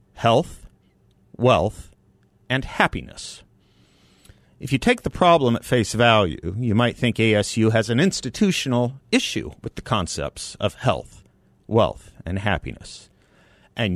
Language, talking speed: English, 125 wpm